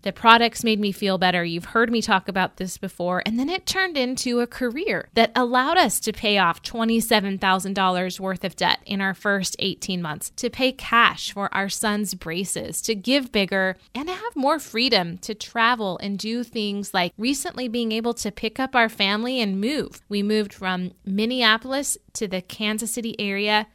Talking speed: 190 wpm